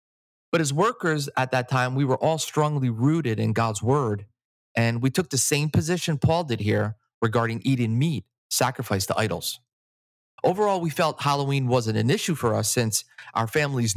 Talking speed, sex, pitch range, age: 175 wpm, male, 115-150 Hz, 30-49